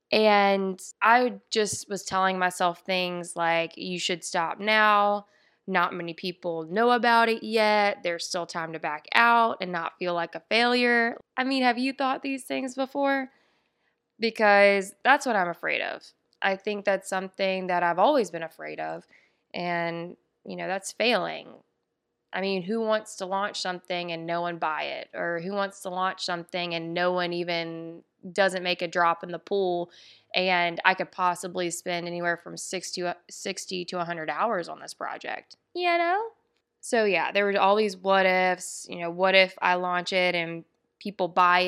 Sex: female